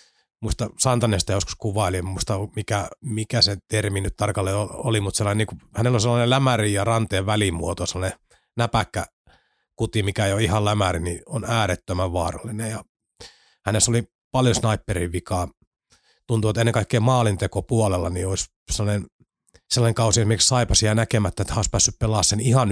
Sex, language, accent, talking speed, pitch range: male, Finnish, native, 160 wpm, 95-110 Hz